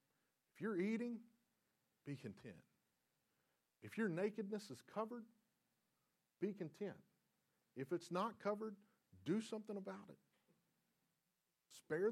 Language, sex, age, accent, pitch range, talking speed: English, male, 40-59, American, 120-195 Hz, 100 wpm